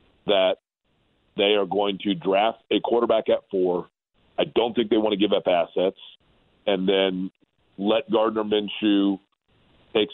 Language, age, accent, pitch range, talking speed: English, 40-59, American, 95-115 Hz, 150 wpm